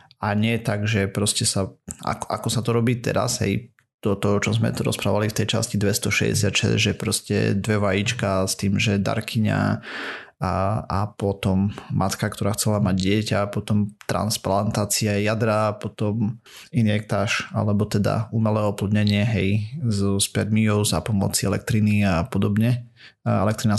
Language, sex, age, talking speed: Slovak, male, 30-49, 135 wpm